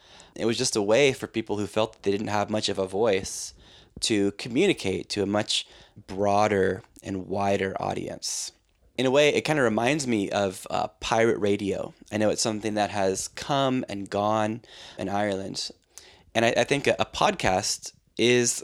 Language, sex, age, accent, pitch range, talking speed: English, male, 20-39, American, 100-120 Hz, 180 wpm